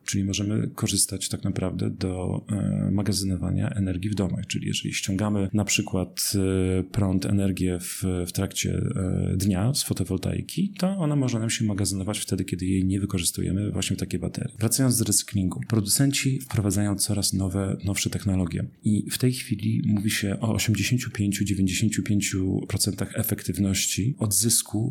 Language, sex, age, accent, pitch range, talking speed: Polish, male, 40-59, native, 95-110 Hz, 135 wpm